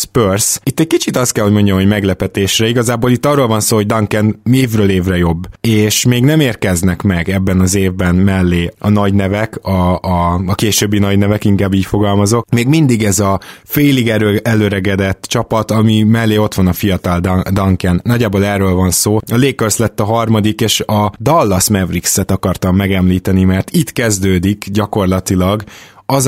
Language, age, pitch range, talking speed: Hungarian, 20-39, 95-115 Hz, 170 wpm